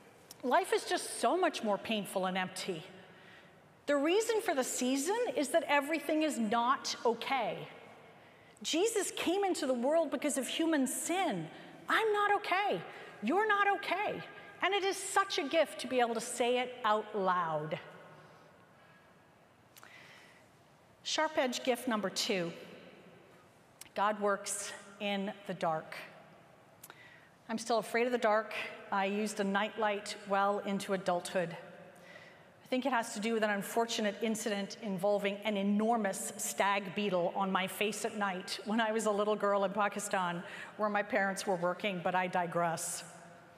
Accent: American